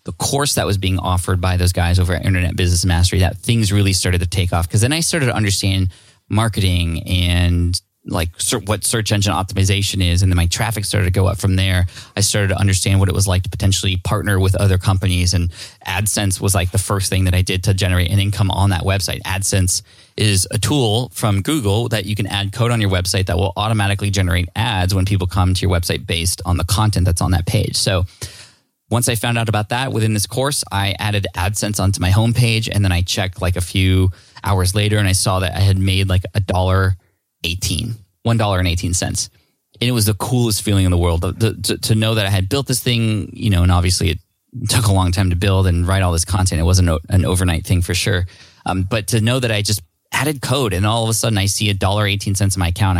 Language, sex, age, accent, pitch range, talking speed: English, male, 20-39, American, 90-110 Hz, 240 wpm